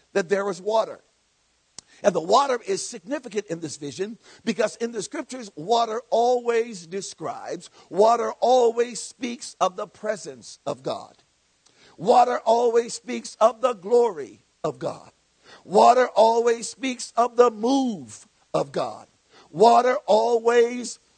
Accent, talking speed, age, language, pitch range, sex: American, 130 wpm, 50-69, English, 220-275 Hz, male